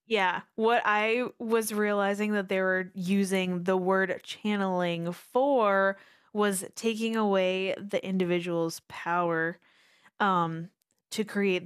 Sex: female